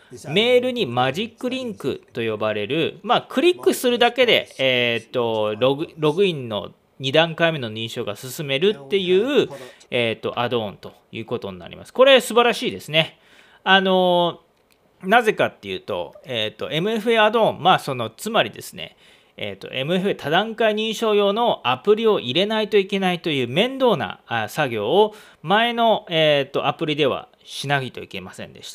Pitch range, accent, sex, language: 135-215 Hz, native, male, Japanese